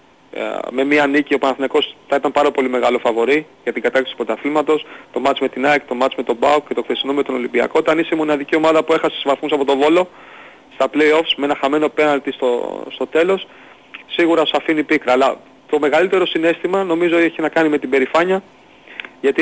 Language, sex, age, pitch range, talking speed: Greek, male, 30-49, 135-160 Hz, 210 wpm